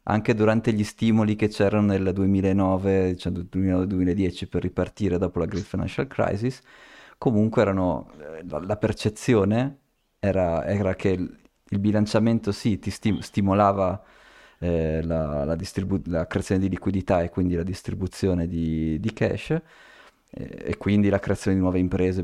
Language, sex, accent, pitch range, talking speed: Italian, male, native, 85-105 Hz, 140 wpm